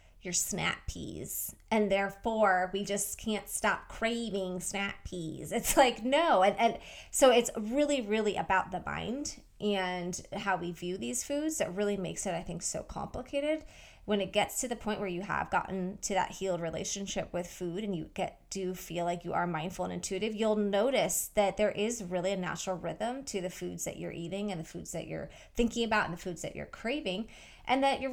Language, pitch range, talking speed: English, 185-230 Hz, 205 wpm